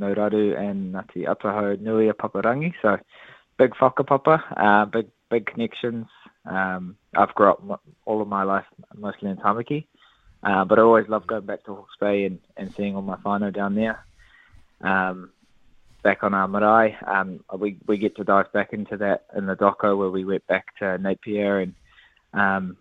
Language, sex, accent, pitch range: English, male, Australian, 95-110 Hz